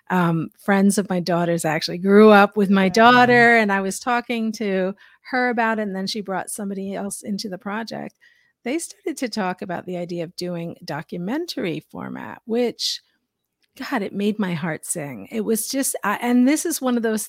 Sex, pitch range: female, 180-235 Hz